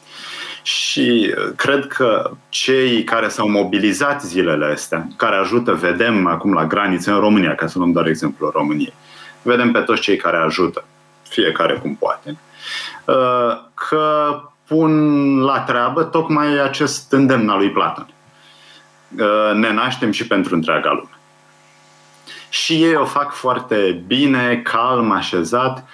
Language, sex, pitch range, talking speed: Romanian, male, 115-145 Hz, 130 wpm